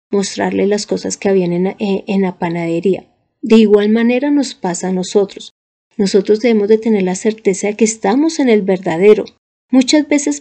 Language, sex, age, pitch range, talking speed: Spanish, female, 40-59, 195-240 Hz, 180 wpm